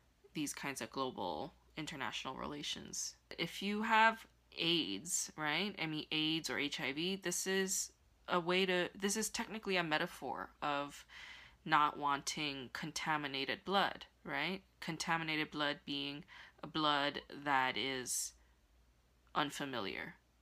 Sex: female